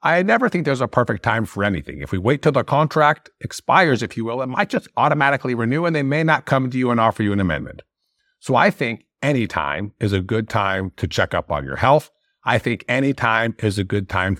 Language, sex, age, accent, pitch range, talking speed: English, male, 50-69, American, 100-150 Hz, 245 wpm